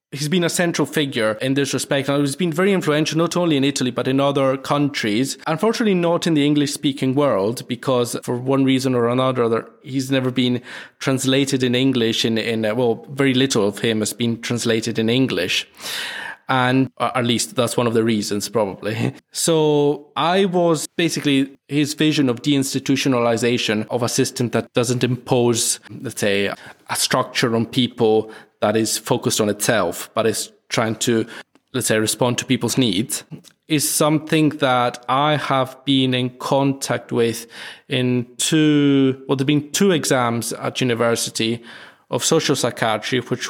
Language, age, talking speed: English, 20-39, 165 wpm